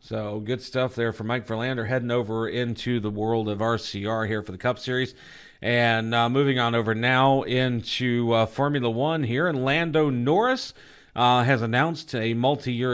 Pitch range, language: 115-145 Hz, English